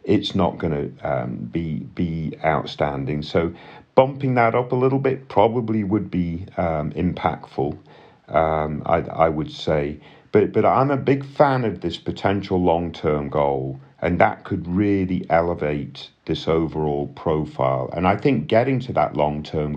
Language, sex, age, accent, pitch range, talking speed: English, male, 40-59, British, 75-100 Hz, 160 wpm